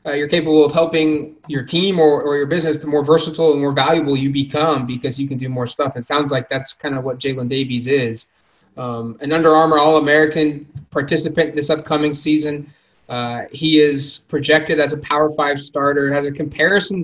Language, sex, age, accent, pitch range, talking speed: English, male, 20-39, American, 140-155 Hz, 195 wpm